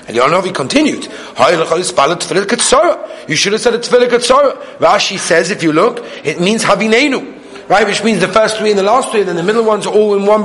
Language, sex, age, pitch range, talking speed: English, male, 30-49, 180-230 Hz, 215 wpm